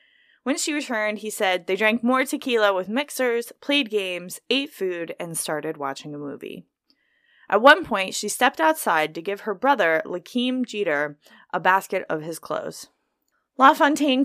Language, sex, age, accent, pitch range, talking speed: English, female, 20-39, American, 175-255 Hz, 160 wpm